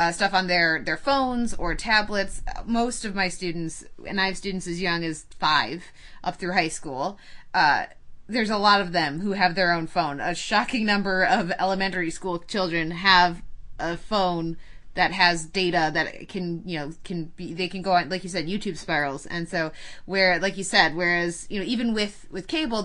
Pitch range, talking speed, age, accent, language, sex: 165-200 Hz, 200 wpm, 20-39, American, English, female